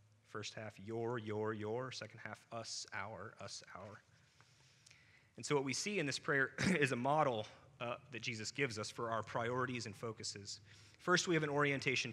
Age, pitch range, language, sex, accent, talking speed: 30-49, 110-135 Hz, English, male, American, 185 wpm